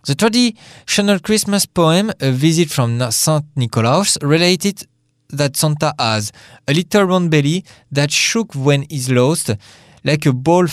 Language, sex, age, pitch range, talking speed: English, male, 20-39, 125-180 Hz, 135 wpm